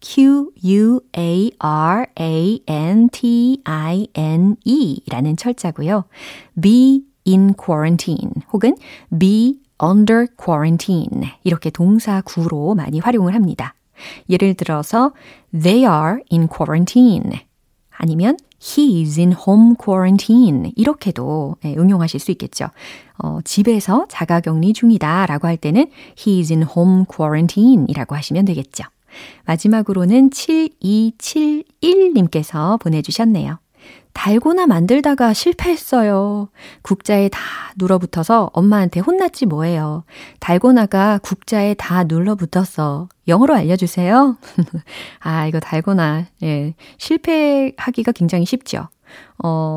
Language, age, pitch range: Korean, 30-49, 165-240 Hz